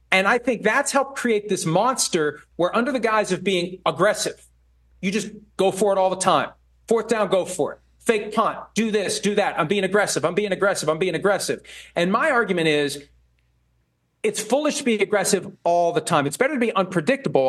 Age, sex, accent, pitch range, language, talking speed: 40-59, male, American, 150-205 Hz, English, 205 wpm